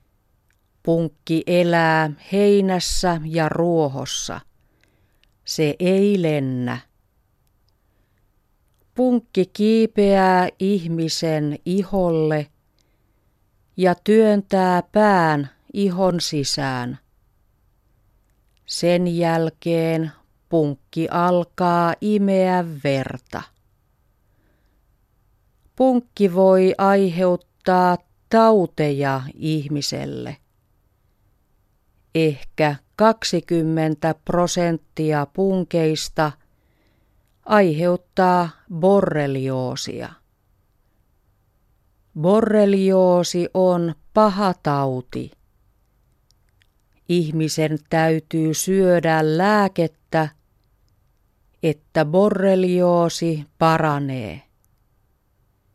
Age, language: 40-59, Finnish